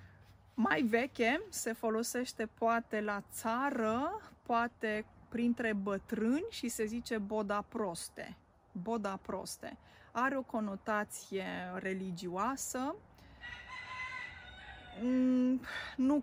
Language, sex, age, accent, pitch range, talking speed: Romanian, female, 20-39, native, 205-255 Hz, 80 wpm